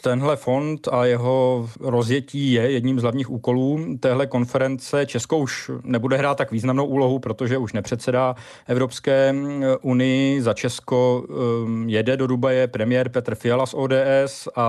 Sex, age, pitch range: male, 40-59, 115-130 Hz